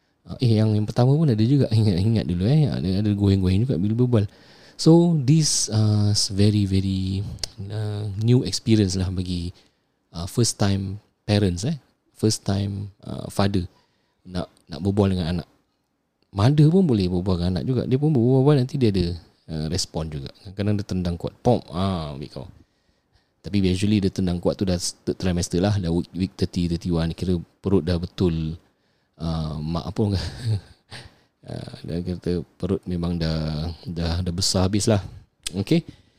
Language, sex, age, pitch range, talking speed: English, male, 20-39, 90-115 Hz, 160 wpm